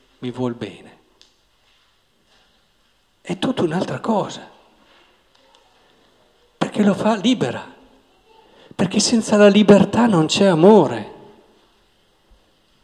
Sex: male